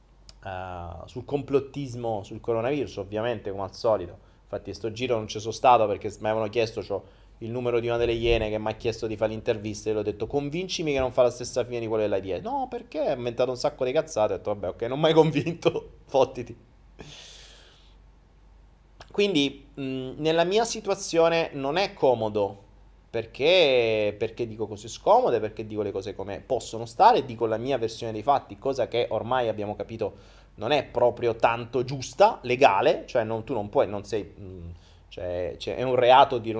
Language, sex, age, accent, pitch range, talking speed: Italian, male, 30-49, native, 105-130 Hz, 190 wpm